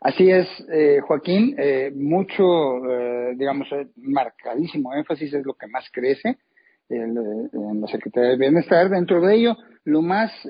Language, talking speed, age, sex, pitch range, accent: Spanish, 150 wpm, 50-69, male, 135-185 Hz, Mexican